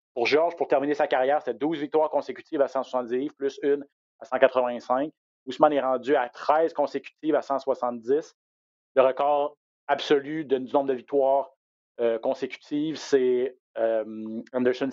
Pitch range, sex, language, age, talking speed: 125-160 Hz, male, French, 30-49, 140 wpm